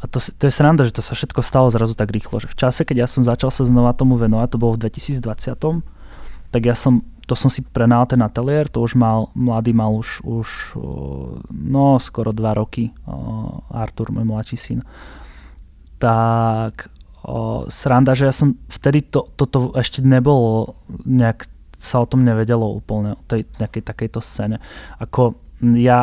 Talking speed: 175 wpm